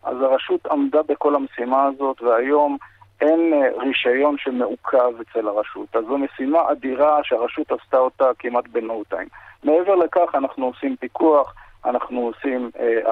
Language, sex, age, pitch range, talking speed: Hebrew, male, 50-69, 120-155 Hz, 135 wpm